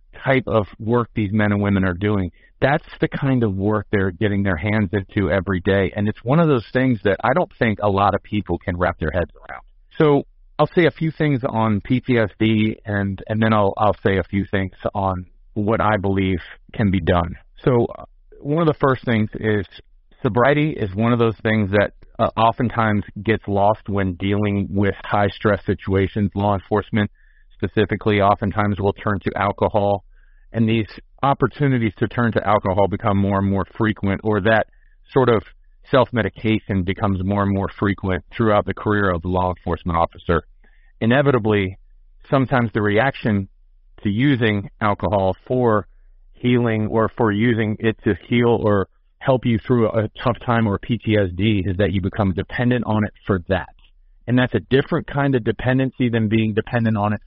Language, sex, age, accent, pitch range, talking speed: English, male, 40-59, American, 100-115 Hz, 180 wpm